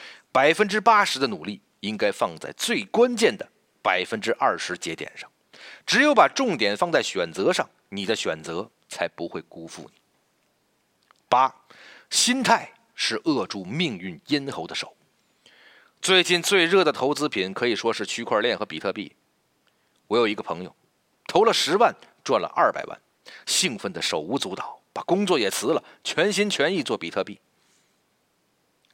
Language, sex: Chinese, male